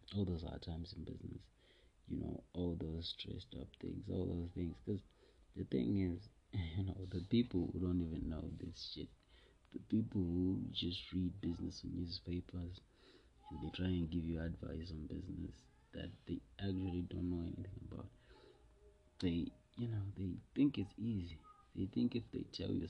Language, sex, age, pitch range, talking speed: English, male, 30-49, 85-100 Hz, 175 wpm